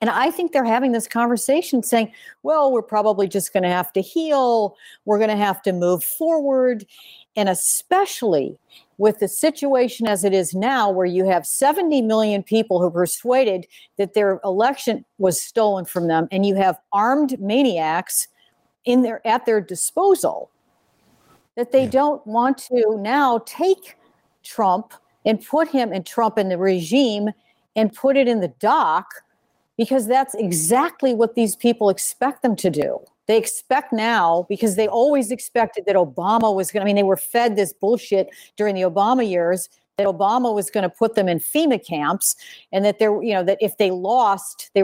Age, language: 50-69, English